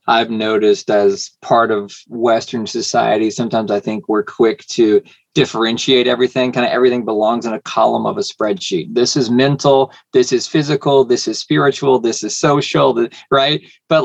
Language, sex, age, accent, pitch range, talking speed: English, male, 20-39, American, 120-160 Hz, 165 wpm